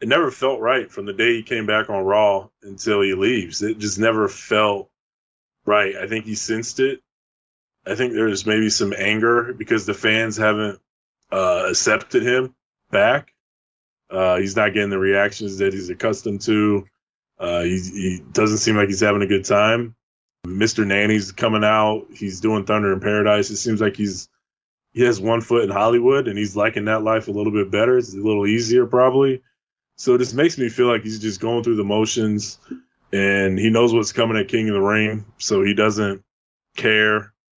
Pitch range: 100-110 Hz